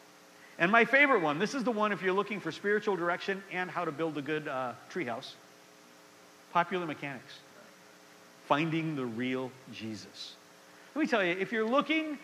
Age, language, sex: 50-69, English, male